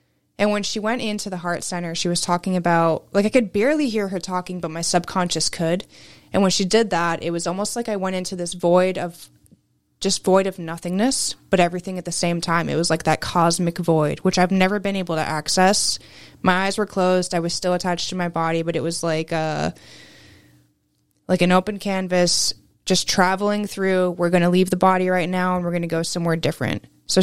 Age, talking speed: 20-39, 220 wpm